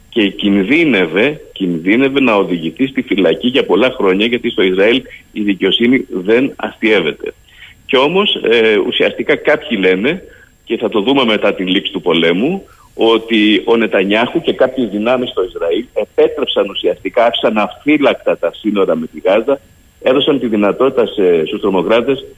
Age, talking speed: 50-69, 145 wpm